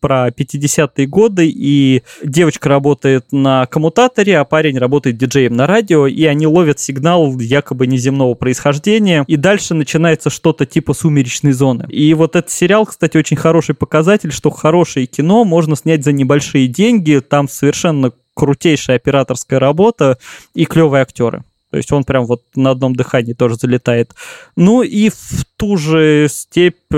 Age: 20-39